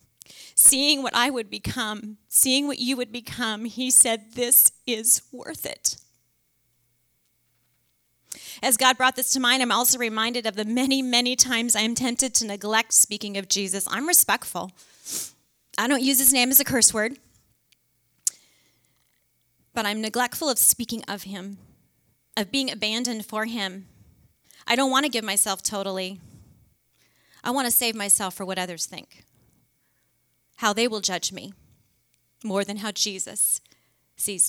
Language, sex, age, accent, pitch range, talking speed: English, female, 30-49, American, 200-250 Hz, 150 wpm